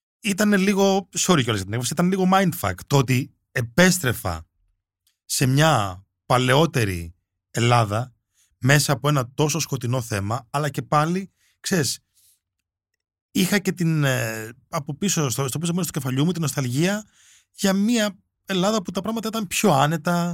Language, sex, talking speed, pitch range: Greek, male, 130 wpm, 110-170 Hz